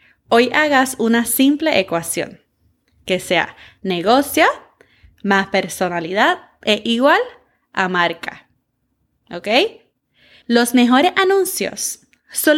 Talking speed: 90 wpm